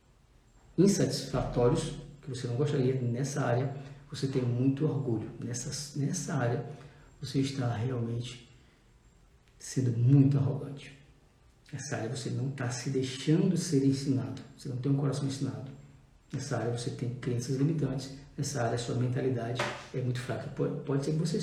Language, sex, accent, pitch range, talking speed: Portuguese, male, Brazilian, 130-145 Hz, 150 wpm